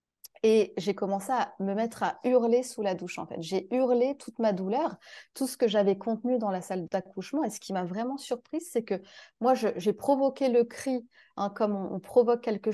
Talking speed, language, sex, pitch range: 220 wpm, French, female, 190-250 Hz